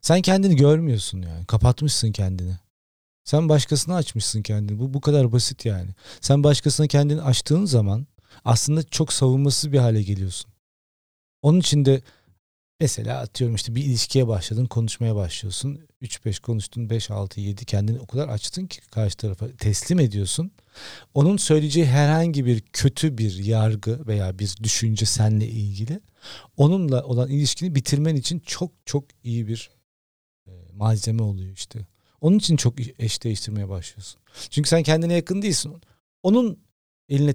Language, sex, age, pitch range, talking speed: Turkish, male, 40-59, 105-140 Hz, 140 wpm